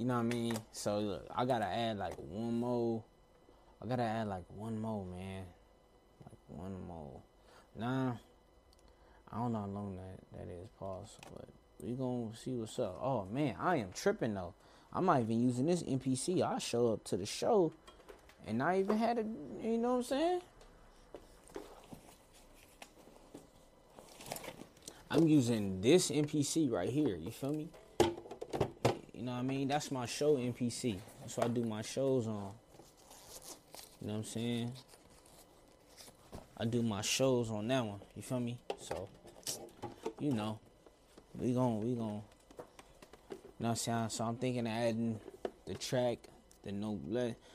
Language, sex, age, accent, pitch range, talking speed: English, male, 20-39, American, 105-130 Hz, 165 wpm